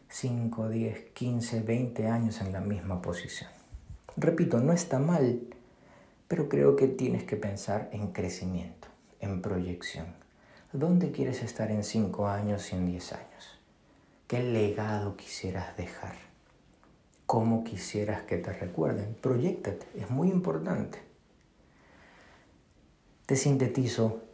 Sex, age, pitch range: male, 50-69, 95-115 Hz